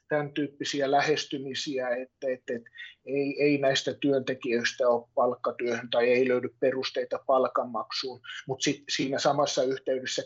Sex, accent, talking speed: male, native, 130 wpm